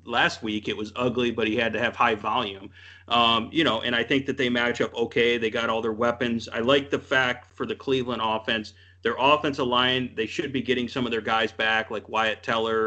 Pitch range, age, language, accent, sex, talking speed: 110-125 Hz, 30-49, English, American, male, 240 wpm